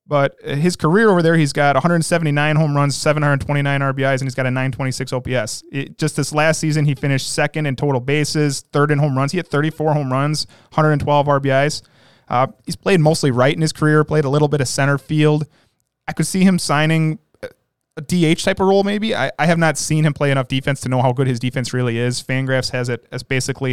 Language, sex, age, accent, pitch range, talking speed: English, male, 20-39, American, 135-165 Hz, 220 wpm